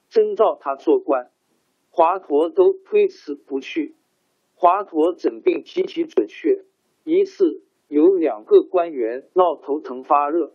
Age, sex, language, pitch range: 50-69, male, Chinese, 320-395 Hz